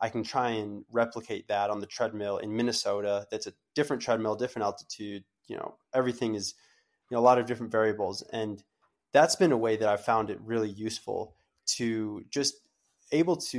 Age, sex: 20-39, male